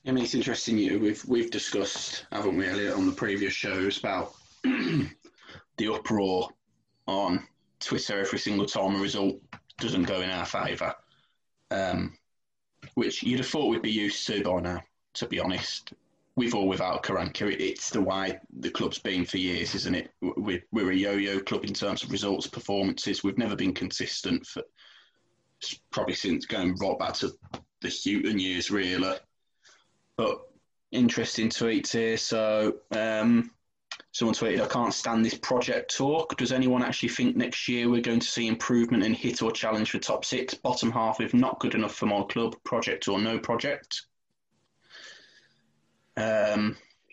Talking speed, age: 170 wpm, 20-39